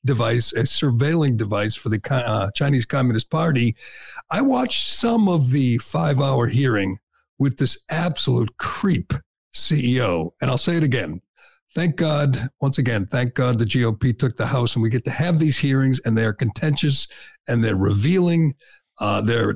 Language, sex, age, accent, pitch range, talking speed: English, male, 50-69, American, 115-145 Hz, 165 wpm